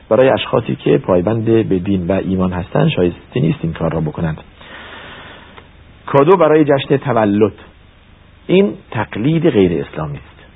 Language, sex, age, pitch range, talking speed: Persian, male, 50-69, 90-120 Hz, 135 wpm